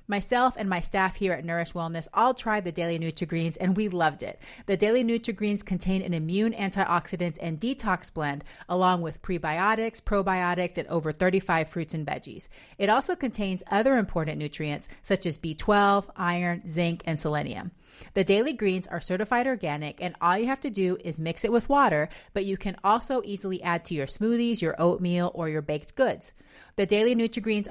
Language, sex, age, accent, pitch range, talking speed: English, female, 30-49, American, 165-215 Hz, 190 wpm